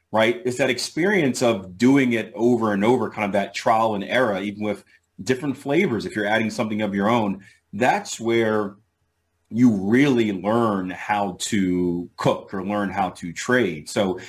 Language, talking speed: English, 170 wpm